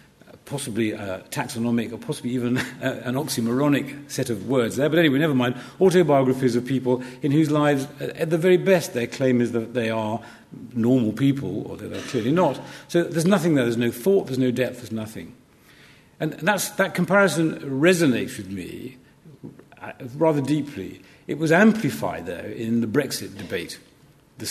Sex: male